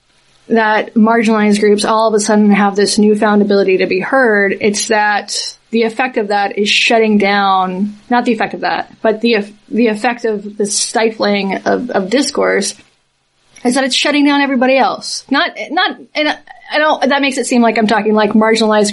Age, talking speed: 20-39, 185 wpm